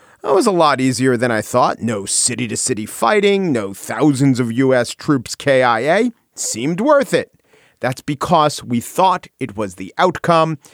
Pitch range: 120-190 Hz